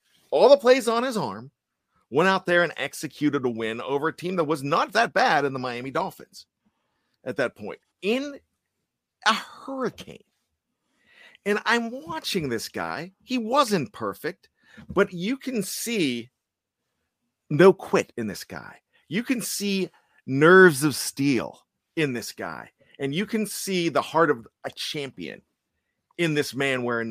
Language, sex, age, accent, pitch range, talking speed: English, male, 40-59, American, 130-195 Hz, 155 wpm